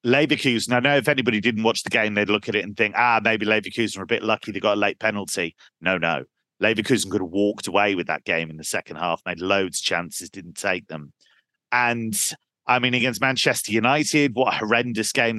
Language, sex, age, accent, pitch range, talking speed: English, male, 40-59, British, 105-130 Hz, 225 wpm